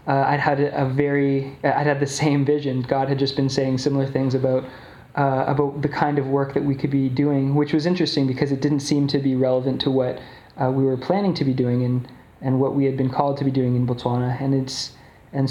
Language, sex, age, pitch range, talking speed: English, male, 20-39, 130-145 Hz, 245 wpm